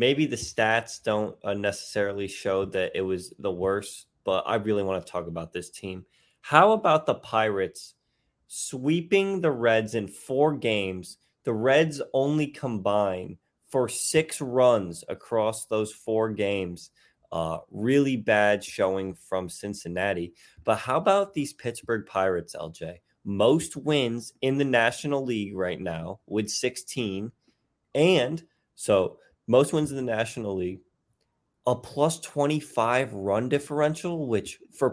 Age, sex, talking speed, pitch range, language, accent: 20-39, male, 135 wpm, 100-150 Hz, English, American